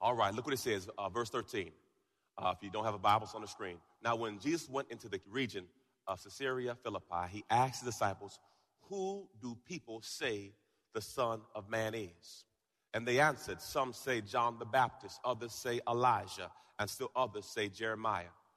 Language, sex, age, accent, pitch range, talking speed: English, male, 30-49, American, 115-160 Hz, 190 wpm